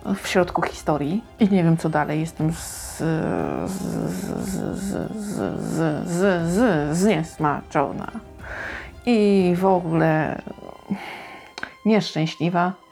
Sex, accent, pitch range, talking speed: female, native, 165-190 Hz, 100 wpm